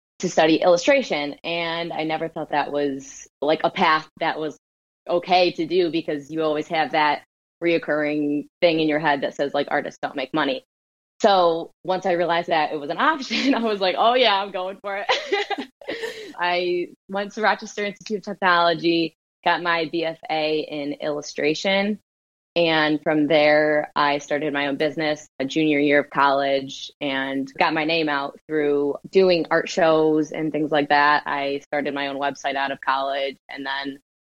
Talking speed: 175 wpm